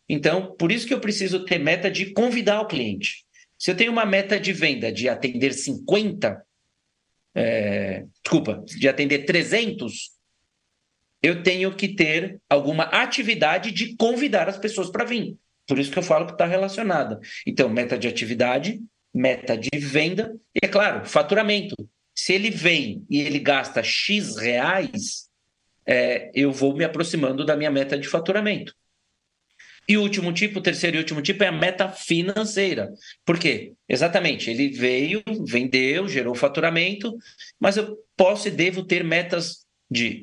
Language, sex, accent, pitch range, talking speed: Portuguese, male, Brazilian, 135-200 Hz, 155 wpm